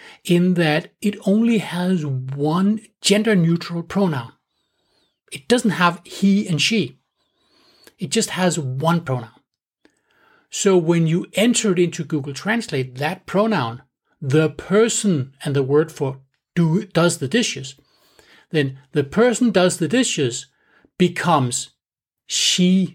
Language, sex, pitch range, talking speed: English, male, 140-195 Hz, 120 wpm